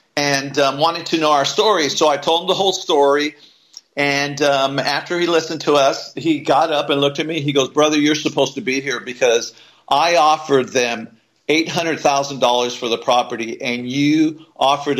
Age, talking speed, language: 50-69, 200 wpm, English